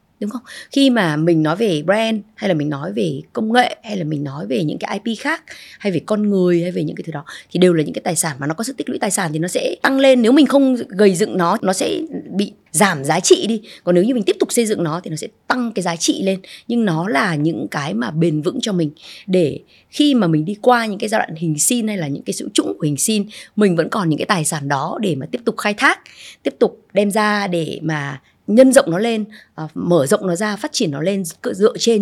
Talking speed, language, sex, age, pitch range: 280 wpm, Vietnamese, female, 20-39, 165-235 Hz